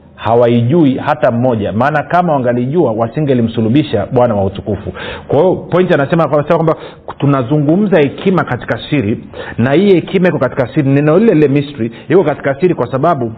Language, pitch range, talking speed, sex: Swahili, 115-155 Hz, 155 wpm, male